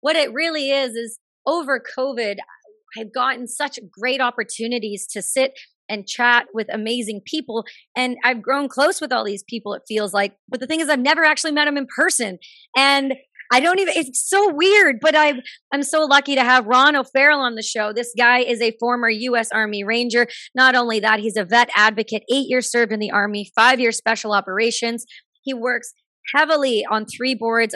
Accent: American